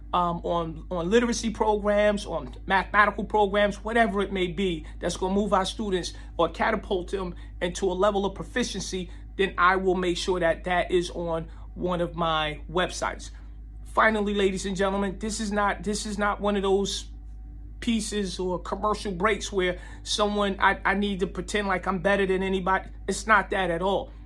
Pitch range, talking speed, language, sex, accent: 185-220 Hz, 180 wpm, English, male, American